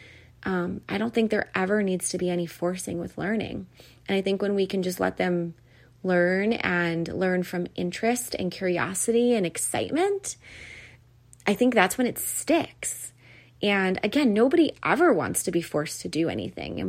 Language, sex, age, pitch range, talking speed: English, female, 30-49, 170-210 Hz, 175 wpm